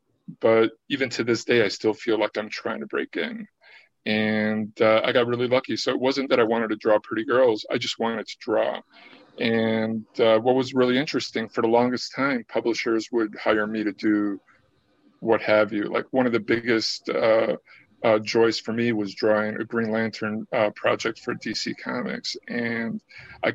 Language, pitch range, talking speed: English, 110-120 Hz, 195 wpm